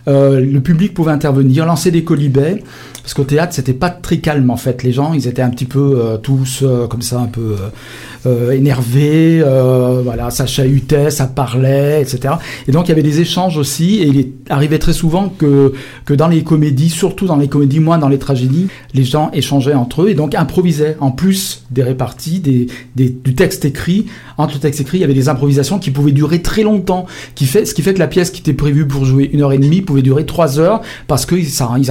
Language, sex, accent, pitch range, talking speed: French, male, French, 135-165 Hz, 230 wpm